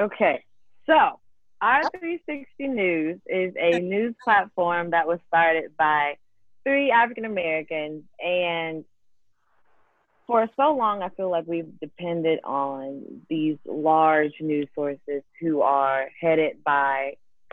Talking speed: 110 wpm